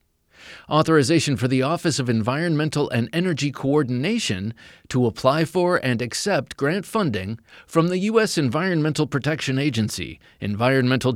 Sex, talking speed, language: male, 125 wpm, English